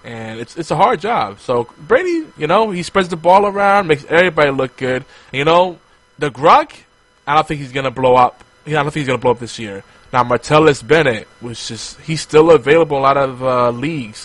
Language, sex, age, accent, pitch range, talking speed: English, male, 20-39, American, 115-150 Hz, 235 wpm